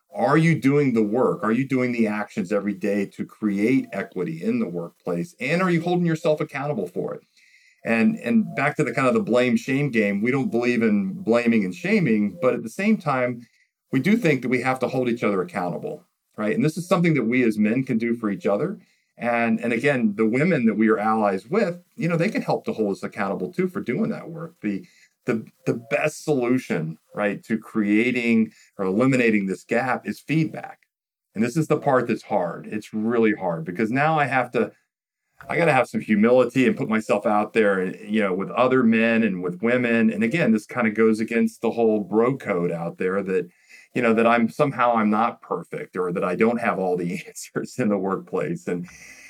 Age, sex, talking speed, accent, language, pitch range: 40-59, male, 220 wpm, American, English, 110-155 Hz